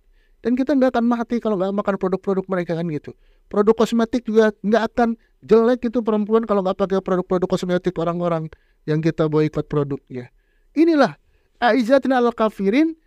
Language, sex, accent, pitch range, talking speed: Indonesian, male, native, 180-240 Hz, 155 wpm